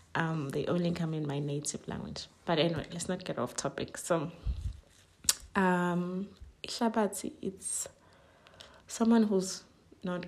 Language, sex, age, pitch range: English, female, 20-39, 155-185 Hz